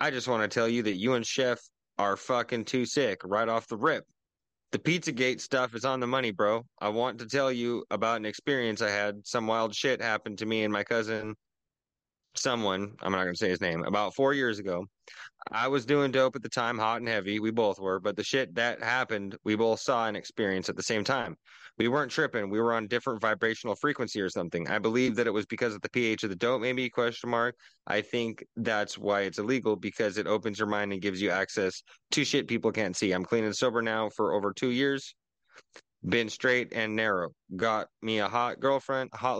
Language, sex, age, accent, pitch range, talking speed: English, male, 20-39, American, 105-125 Hz, 225 wpm